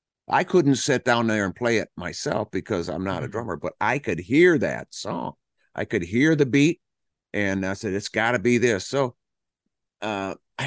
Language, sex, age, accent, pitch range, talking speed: English, male, 50-69, American, 100-135 Hz, 195 wpm